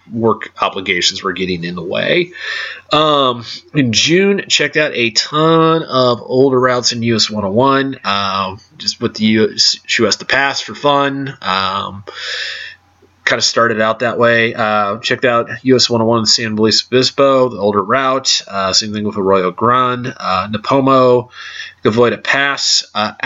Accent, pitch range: American, 105-130 Hz